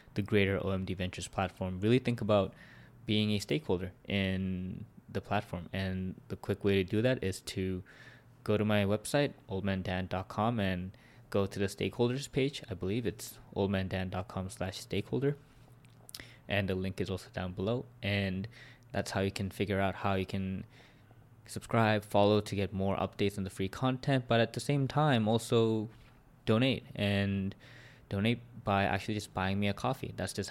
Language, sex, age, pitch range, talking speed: English, male, 20-39, 95-120 Hz, 165 wpm